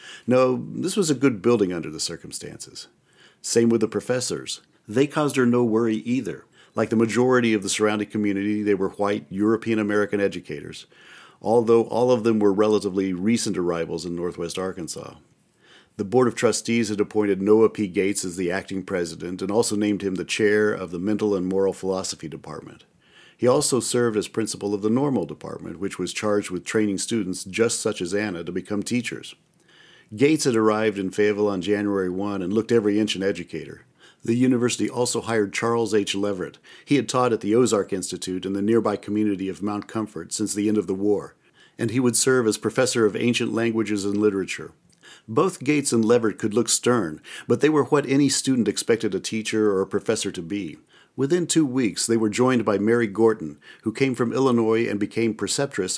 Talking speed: 190 wpm